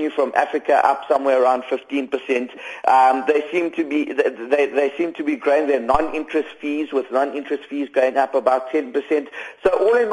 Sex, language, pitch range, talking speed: male, English, 140-175 Hz, 180 wpm